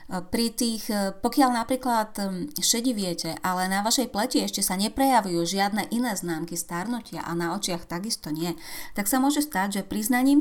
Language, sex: Slovak, female